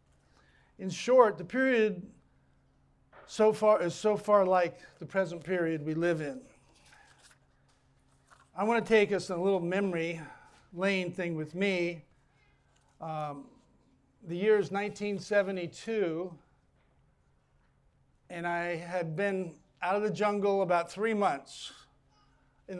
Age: 50-69